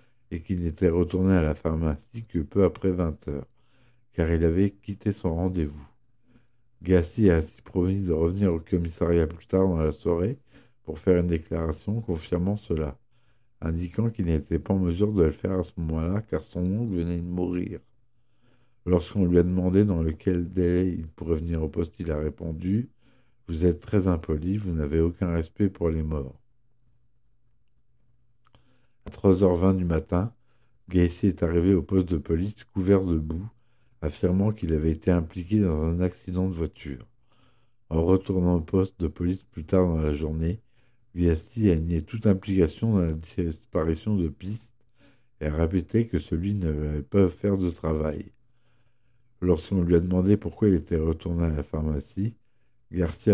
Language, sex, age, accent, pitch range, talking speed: French, male, 60-79, French, 85-110 Hz, 165 wpm